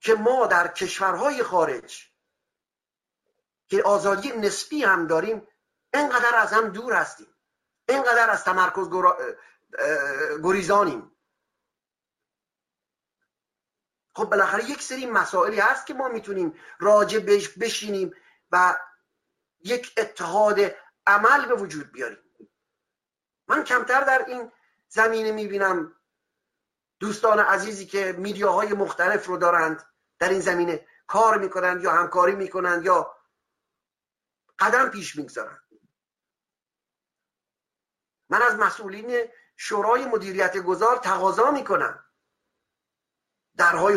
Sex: male